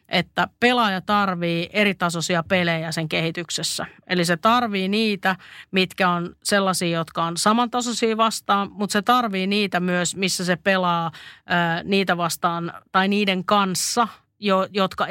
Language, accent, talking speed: Finnish, native, 130 wpm